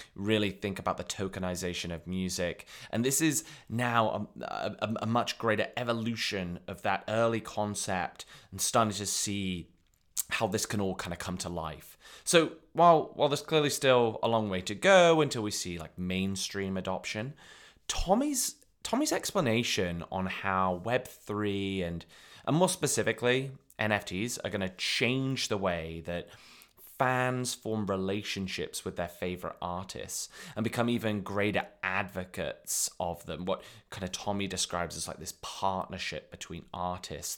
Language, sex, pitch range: English, male, 90-115 Hz